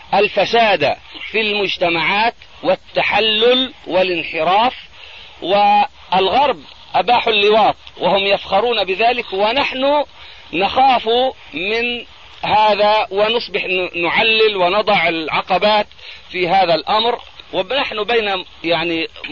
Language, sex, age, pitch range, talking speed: Arabic, male, 40-59, 165-220 Hz, 80 wpm